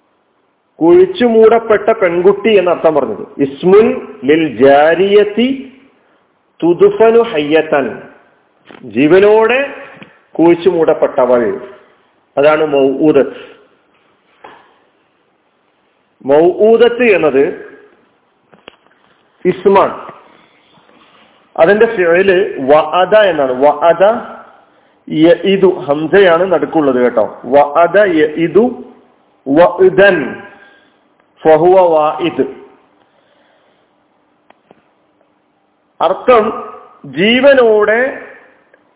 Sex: male